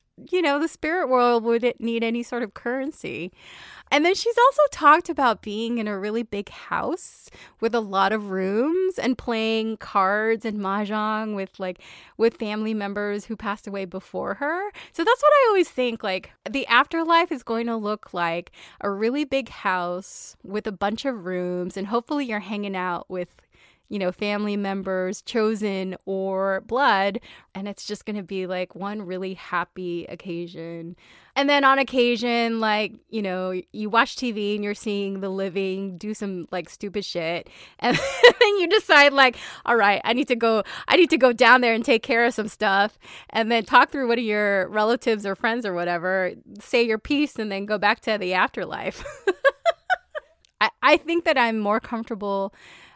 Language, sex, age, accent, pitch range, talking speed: English, female, 20-39, American, 195-250 Hz, 185 wpm